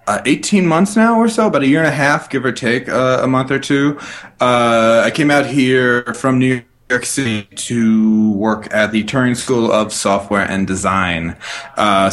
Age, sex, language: 20-39, male, English